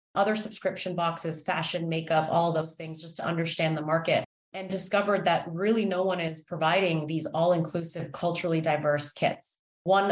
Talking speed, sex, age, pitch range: 160 wpm, female, 30-49, 160-185 Hz